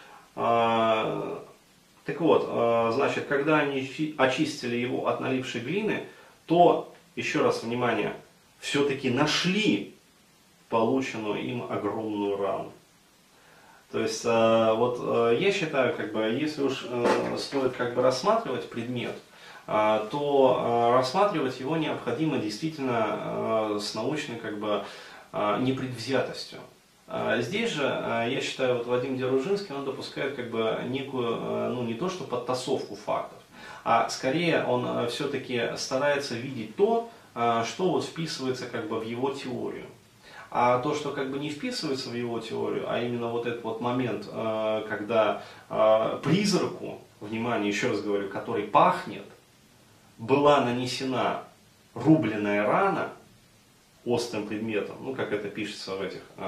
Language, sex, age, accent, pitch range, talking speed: Russian, male, 30-49, native, 110-140 Hz, 120 wpm